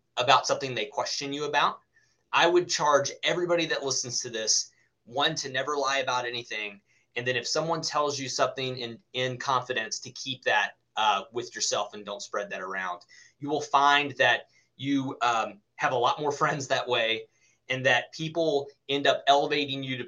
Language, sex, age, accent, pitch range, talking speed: English, male, 30-49, American, 120-145 Hz, 185 wpm